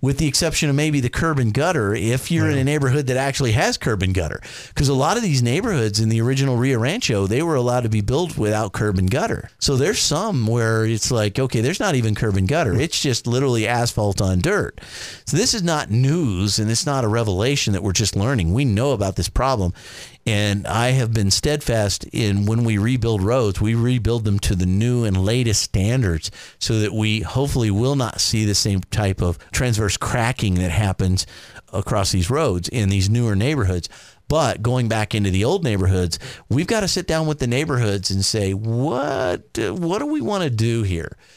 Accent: American